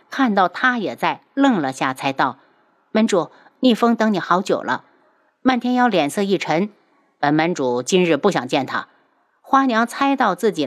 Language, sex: Chinese, female